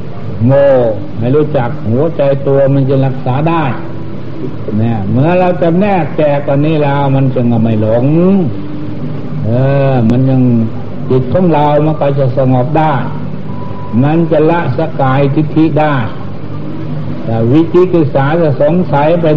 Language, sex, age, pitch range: Thai, male, 60-79, 130-160 Hz